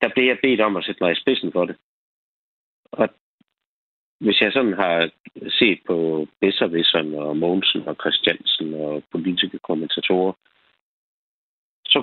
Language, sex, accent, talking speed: Danish, male, native, 140 wpm